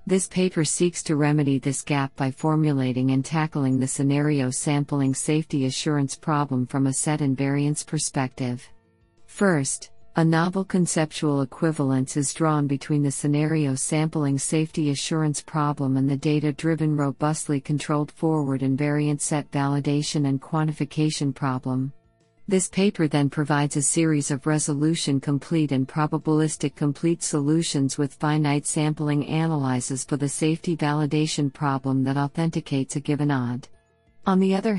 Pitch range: 140-155 Hz